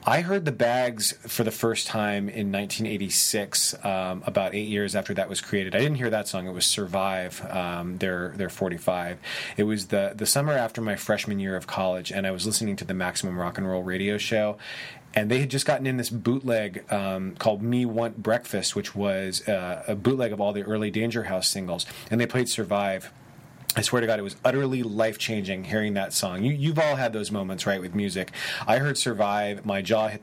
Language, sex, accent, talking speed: English, male, American, 215 wpm